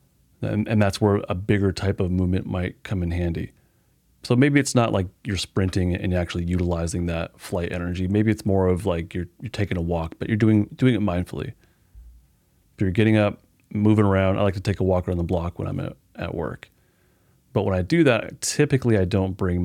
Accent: American